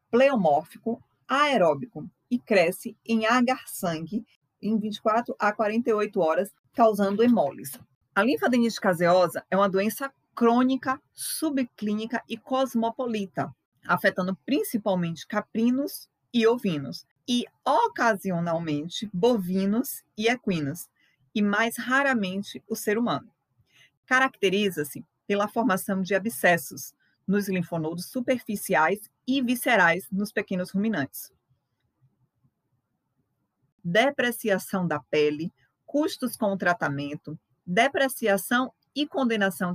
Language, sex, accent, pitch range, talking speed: Portuguese, female, Brazilian, 170-230 Hz, 95 wpm